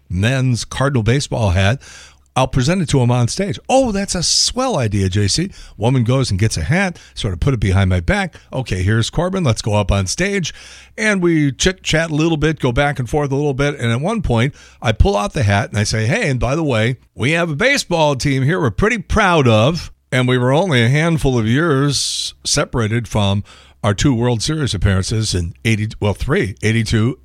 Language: English